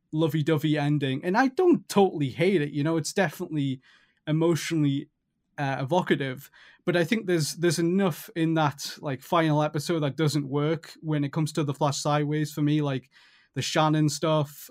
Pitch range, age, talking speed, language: 145-170 Hz, 20-39, 170 wpm, English